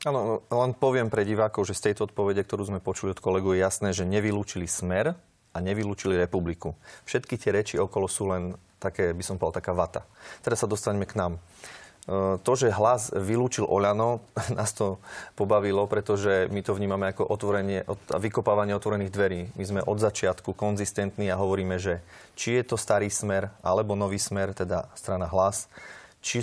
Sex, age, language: male, 30-49, Slovak